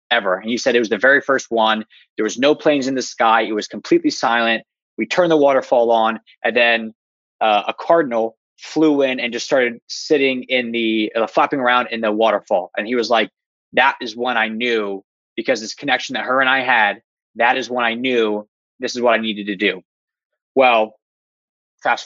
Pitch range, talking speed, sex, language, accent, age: 110-145 Hz, 205 wpm, male, English, American, 20-39